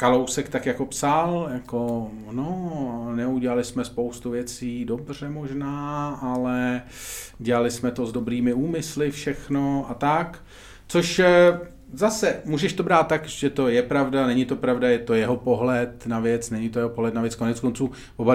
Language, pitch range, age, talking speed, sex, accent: Czech, 115-140 Hz, 40-59, 165 wpm, male, native